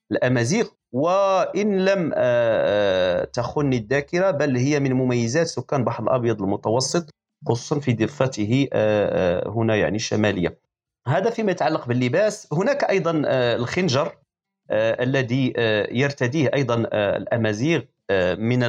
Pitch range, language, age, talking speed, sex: 110-160 Hz, Arabic, 40-59, 100 wpm, male